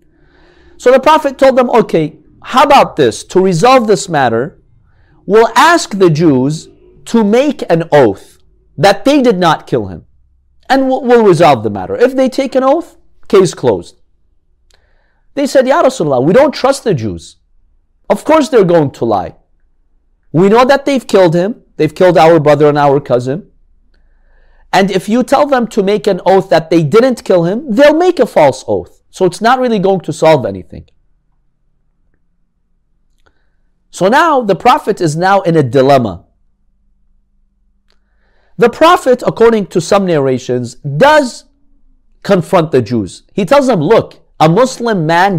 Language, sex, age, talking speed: English, male, 50-69, 160 wpm